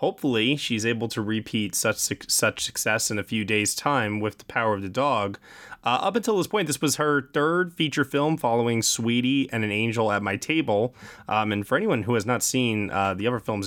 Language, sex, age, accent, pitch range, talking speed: English, male, 20-39, American, 105-135 Hz, 220 wpm